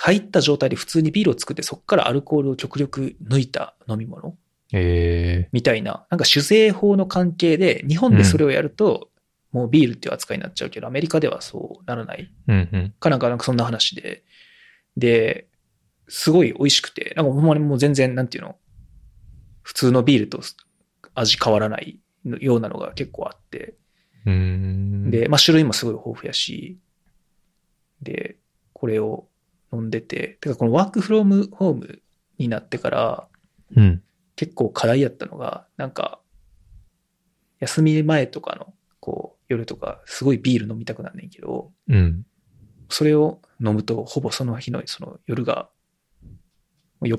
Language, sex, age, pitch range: Japanese, male, 20-39, 110-155 Hz